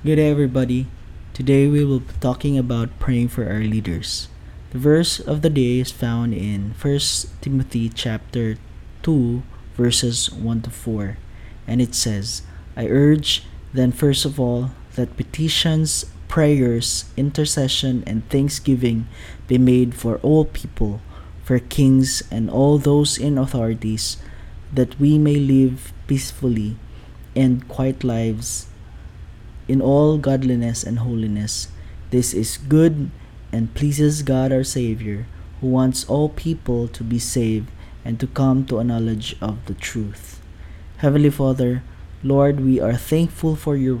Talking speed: 140 wpm